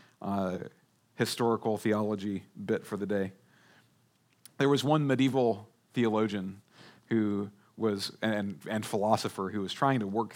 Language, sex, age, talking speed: English, male, 40-59, 125 wpm